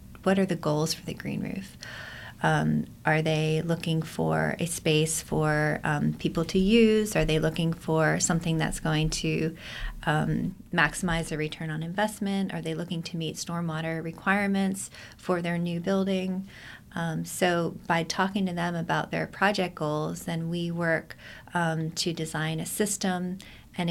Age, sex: 30-49, female